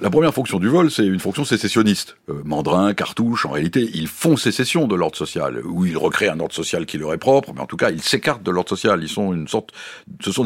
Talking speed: 250 wpm